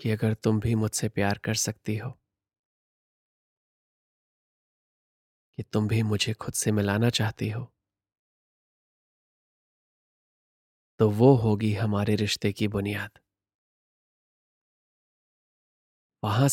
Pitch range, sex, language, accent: 100-115 Hz, male, Hindi, native